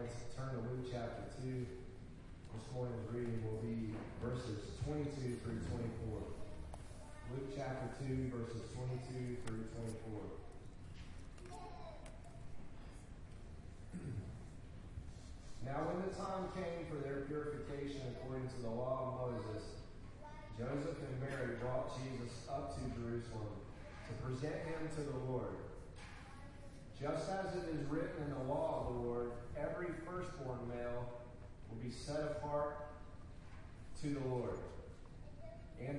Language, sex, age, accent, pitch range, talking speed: English, male, 30-49, American, 110-140 Hz, 120 wpm